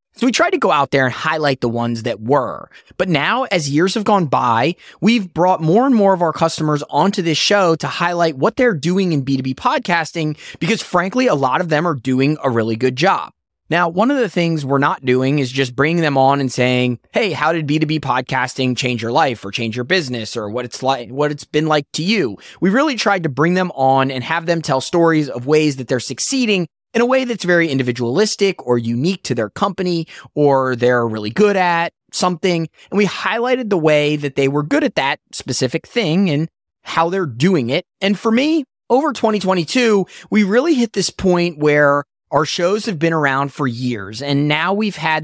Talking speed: 215 wpm